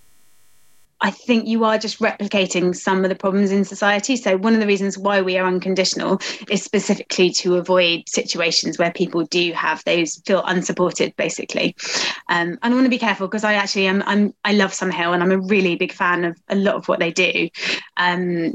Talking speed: 205 wpm